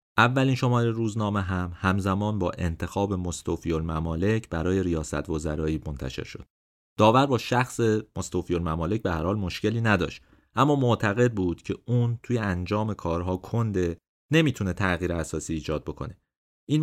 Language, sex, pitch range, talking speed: Persian, male, 90-115 Hz, 140 wpm